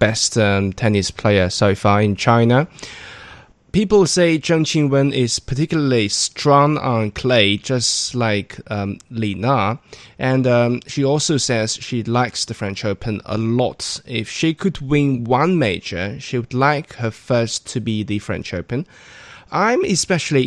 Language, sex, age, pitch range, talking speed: English, male, 20-39, 105-135 Hz, 150 wpm